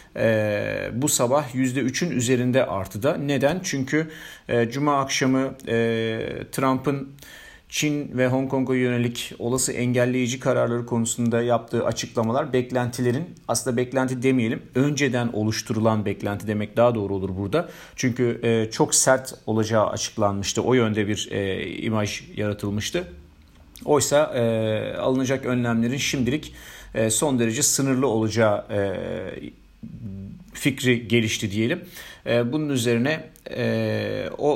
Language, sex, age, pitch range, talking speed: Turkish, male, 50-69, 115-135 Hz, 115 wpm